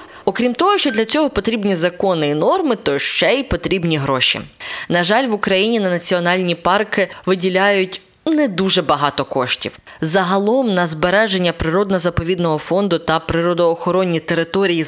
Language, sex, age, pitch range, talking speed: Ukrainian, female, 20-39, 160-205 Hz, 135 wpm